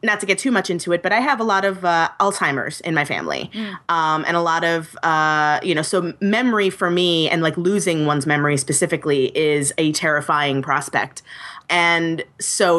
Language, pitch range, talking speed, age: English, 160-205 Hz, 195 wpm, 20-39